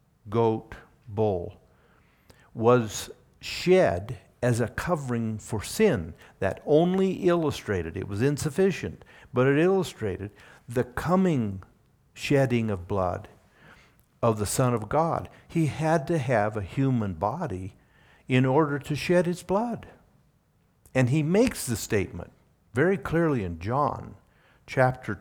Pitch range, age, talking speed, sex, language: 100-135 Hz, 60-79, 120 wpm, male, English